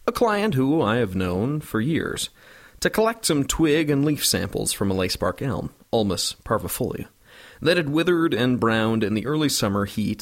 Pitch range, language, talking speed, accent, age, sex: 100-145 Hz, English, 180 wpm, American, 40-59, male